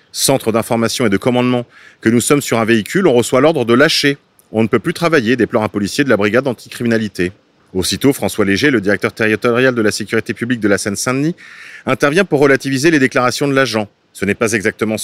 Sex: male